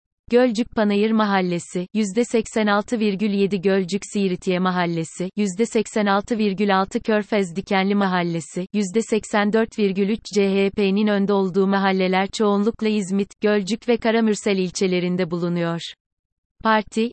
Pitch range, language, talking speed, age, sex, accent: 190-220 Hz, Turkish, 75 wpm, 30-49, female, native